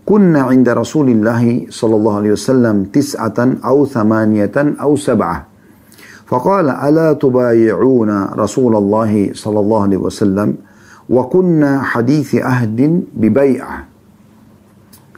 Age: 50-69